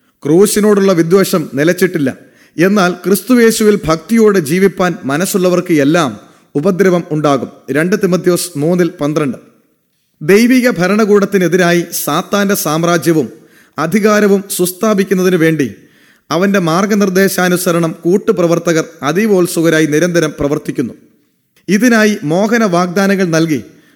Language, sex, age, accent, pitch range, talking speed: English, male, 30-49, Indian, 160-200 Hz, 80 wpm